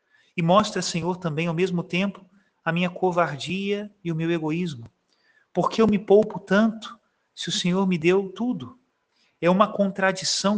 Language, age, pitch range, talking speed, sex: Portuguese, 40-59, 150-185 Hz, 160 wpm, male